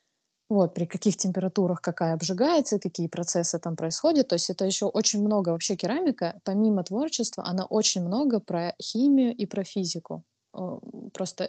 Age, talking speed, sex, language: 20-39, 150 wpm, female, Russian